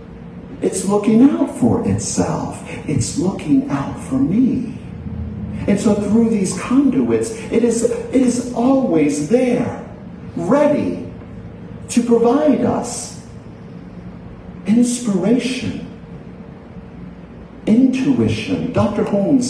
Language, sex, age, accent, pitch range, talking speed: English, male, 50-69, American, 180-245 Hz, 90 wpm